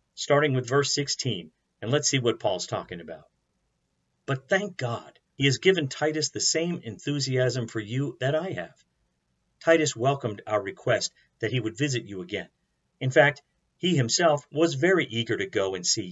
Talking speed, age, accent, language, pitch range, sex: 175 wpm, 50-69, American, English, 110-145 Hz, male